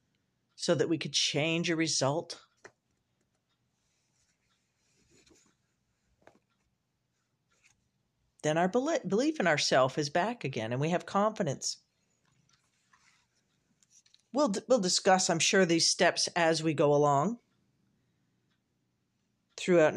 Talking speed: 95 wpm